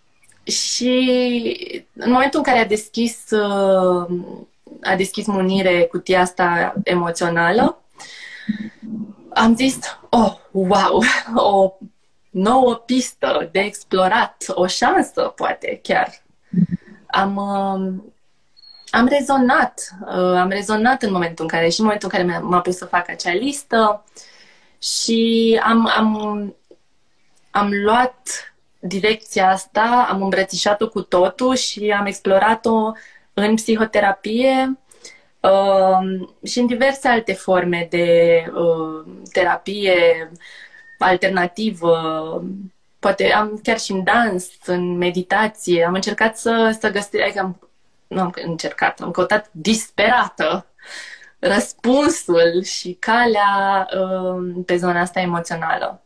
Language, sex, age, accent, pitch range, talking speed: Romanian, female, 20-39, native, 180-230 Hz, 105 wpm